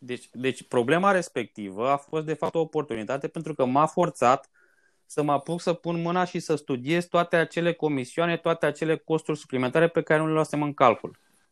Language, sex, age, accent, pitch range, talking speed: Romanian, male, 20-39, native, 135-170 Hz, 195 wpm